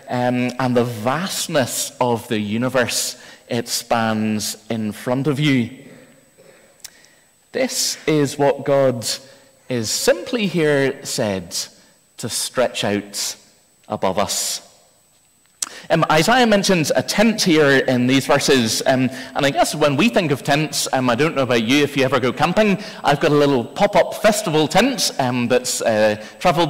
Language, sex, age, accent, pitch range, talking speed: English, male, 30-49, British, 130-180 Hz, 150 wpm